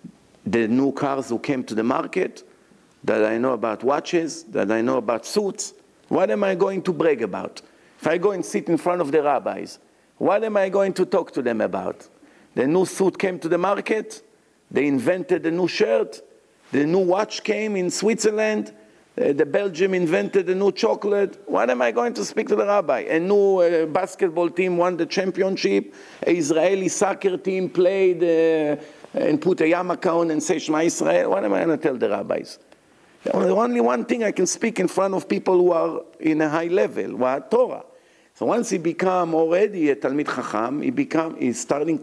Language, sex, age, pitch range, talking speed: English, male, 50-69, 160-200 Hz, 205 wpm